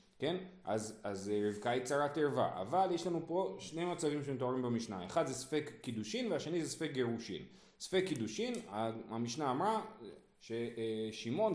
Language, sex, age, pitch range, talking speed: Hebrew, male, 30-49, 120-175 Hz, 145 wpm